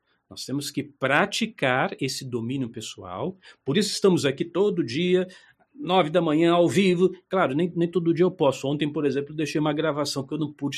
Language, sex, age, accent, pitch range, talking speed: Portuguese, male, 50-69, Brazilian, 140-190 Hz, 195 wpm